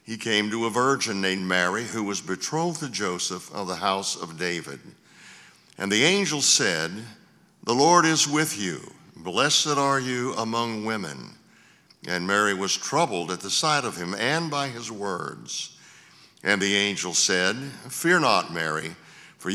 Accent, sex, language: American, male, English